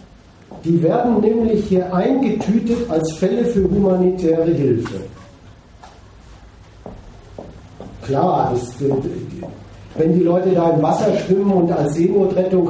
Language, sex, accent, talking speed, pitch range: German, male, German, 110 wpm, 145-195 Hz